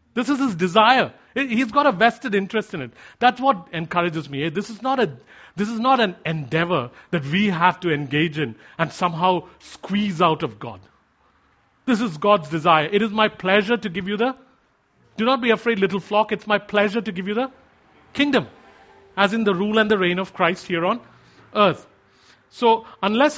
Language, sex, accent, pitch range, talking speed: English, male, Indian, 145-215 Hz, 195 wpm